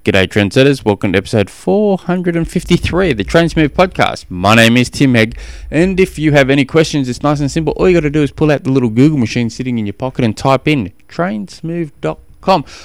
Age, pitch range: 20-39, 110-155 Hz